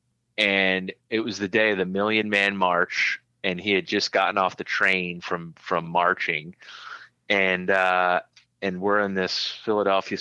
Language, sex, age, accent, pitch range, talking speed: English, male, 30-49, American, 90-105 Hz, 165 wpm